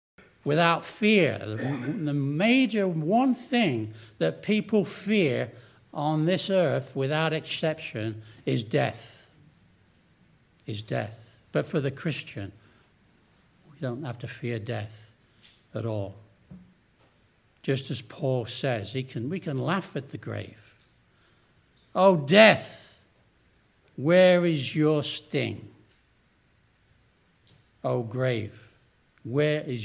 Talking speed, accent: 105 wpm, British